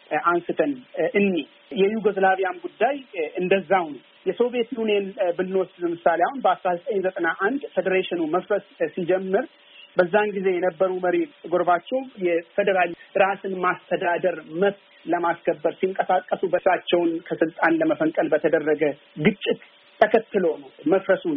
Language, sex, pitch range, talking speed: Amharic, male, 175-205 Hz, 95 wpm